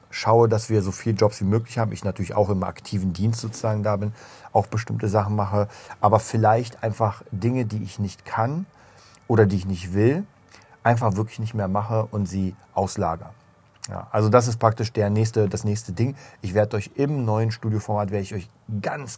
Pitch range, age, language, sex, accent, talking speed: 100-115 Hz, 40-59, German, male, German, 195 wpm